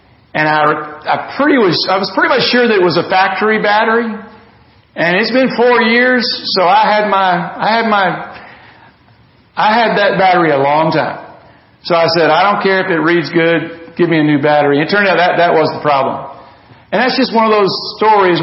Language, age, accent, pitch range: English, 50-69, American, 160-205 Hz